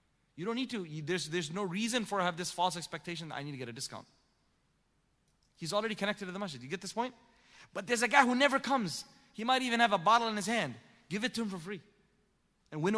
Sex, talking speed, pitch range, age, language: male, 255 wpm, 140-205 Hz, 30-49, English